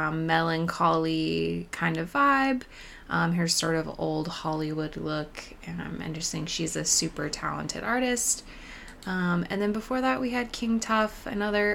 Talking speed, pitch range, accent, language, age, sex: 160 wpm, 160-205 Hz, American, English, 20-39, female